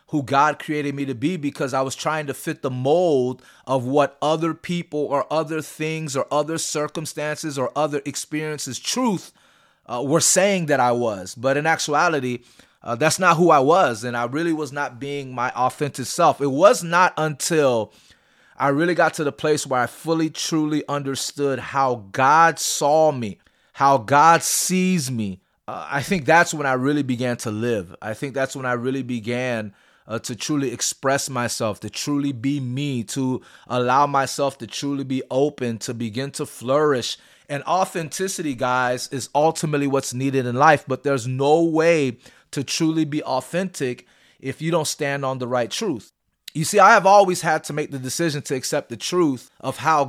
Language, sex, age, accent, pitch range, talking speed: English, male, 30-49, American, 130-155 Hz, 185 wpm